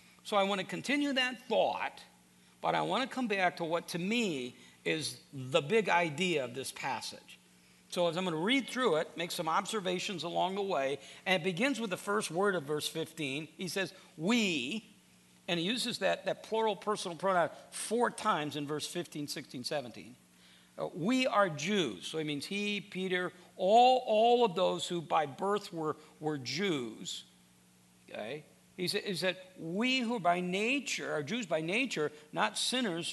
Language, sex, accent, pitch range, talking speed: English, male, American, 150-205 Hz, 180 wpm